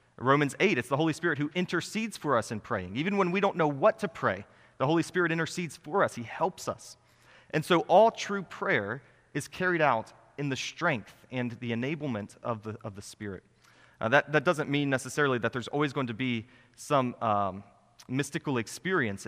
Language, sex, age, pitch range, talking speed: English, male, 30-49, 115-155 Hz, 195 wpm